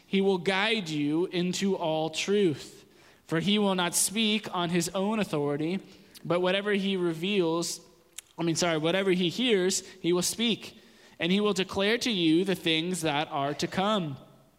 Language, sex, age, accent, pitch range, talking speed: English, male, 20-39, American, 160-195 Hz, 170 wpm